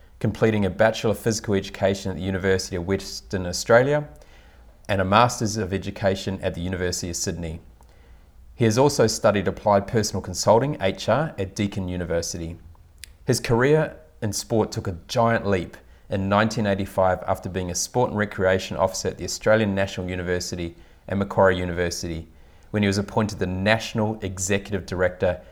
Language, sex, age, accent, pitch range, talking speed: English, male, 30-49, Australian, 90-105 Hz, 155 wpm